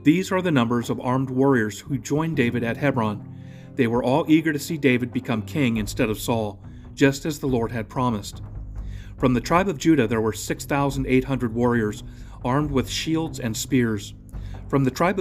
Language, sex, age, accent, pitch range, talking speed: English, male, 40-59, American, 110-140 Hz, 185 wpm